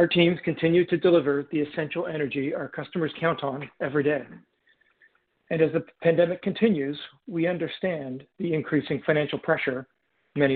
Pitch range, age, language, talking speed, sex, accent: 145-170 Hz, 50-69, English, 150 wpm, male, American